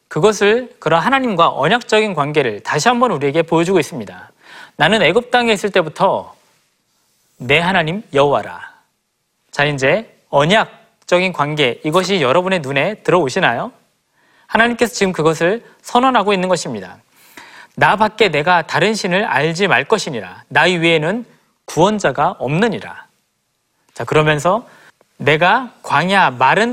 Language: Korean